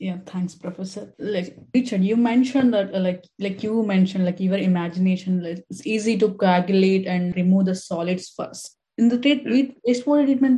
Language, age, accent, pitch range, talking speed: English, 20-39, Indian, 190-235 Hz, 180 wpm